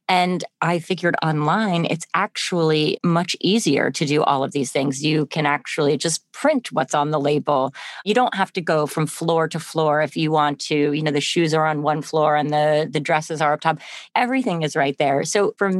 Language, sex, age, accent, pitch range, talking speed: English, female, 30-49, American, 150-180 Hz, 215 wpm